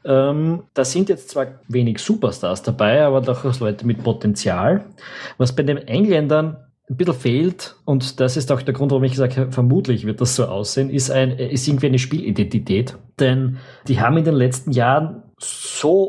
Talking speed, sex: 185 wpm, male